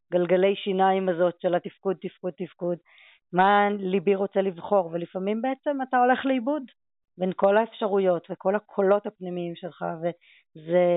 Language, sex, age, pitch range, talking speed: Hebrew, female, 20-39, 175-205 Hz, 130 wpm